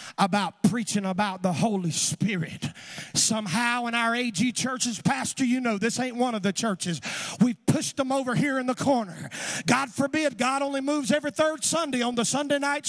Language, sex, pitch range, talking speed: English, male, 185-285 Hz, 185 wpm